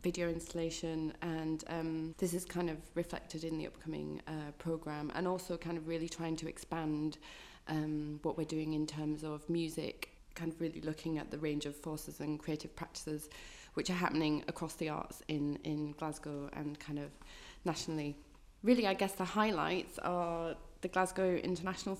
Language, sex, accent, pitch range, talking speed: English, female, British, 155-175 Hz, 175 wpm